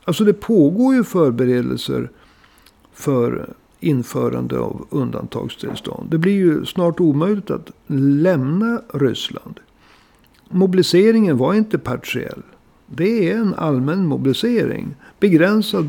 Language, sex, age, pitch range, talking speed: Swedish, male, 60-79, 125-180 Hz, 100 wpm